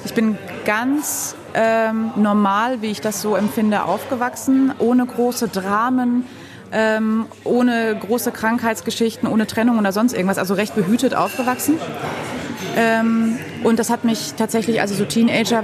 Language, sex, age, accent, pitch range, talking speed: German, female, 30-49, German, 190-230 Hz, 140 wpm